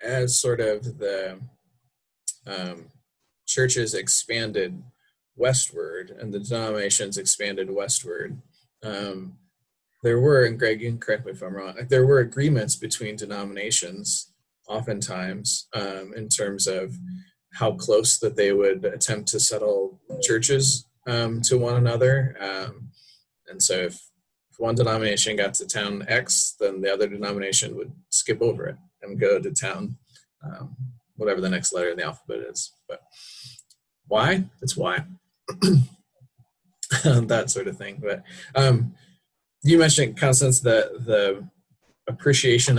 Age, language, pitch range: 20-39, English, 105-140 Hz